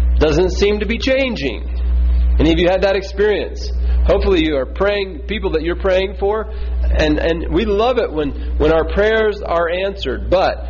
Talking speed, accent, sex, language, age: 180 wpm, American, male, English, 40-59